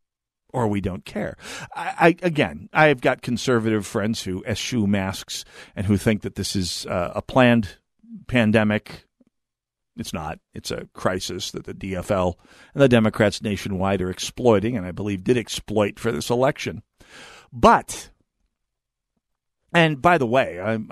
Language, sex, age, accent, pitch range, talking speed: English, male, 50-69, American, 100-120 Hz, 150 wpm